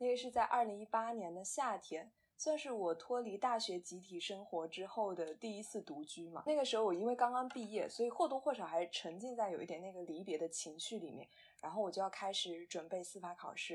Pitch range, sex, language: 175-225 Hz, female, Chinese